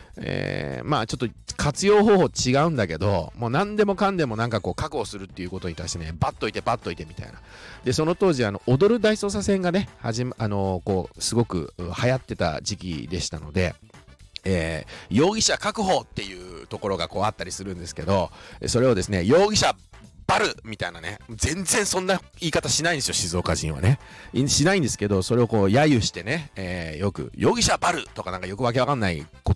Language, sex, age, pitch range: Japanese, male, 40-59, 90-135 Hz